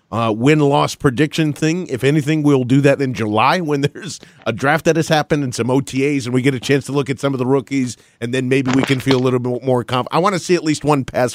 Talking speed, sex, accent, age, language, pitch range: 275 wpm, male, American, 40-59, English, 130-160 Hz